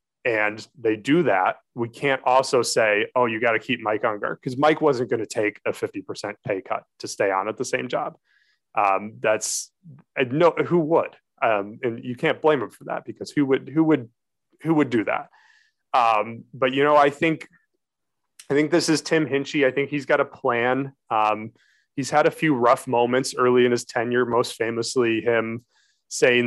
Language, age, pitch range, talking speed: English, 30-49, 110-135 Hz, 200 wpm